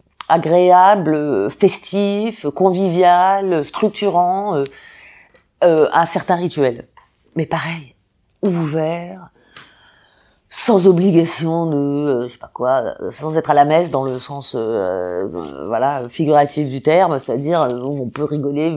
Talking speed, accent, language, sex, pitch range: 125 wpm, French, French, female, 140-180 Hz